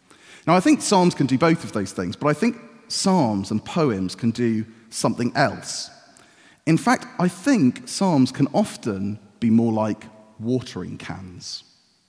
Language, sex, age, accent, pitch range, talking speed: English, male, 40-59, British, 100-140 Hz, 160 wpm